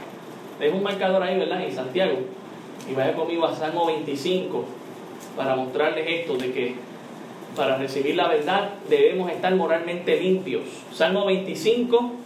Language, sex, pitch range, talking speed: Spanish, male, 185-240 Hz, 135 wpm